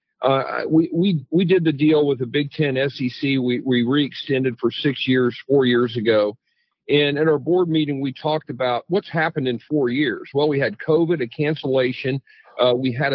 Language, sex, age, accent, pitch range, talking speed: English, male, 50-69, American, 130-165 Hz, 195 wpm